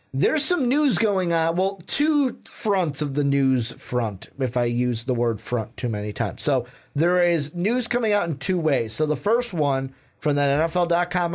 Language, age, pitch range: English, 30-49, 140-195 Hz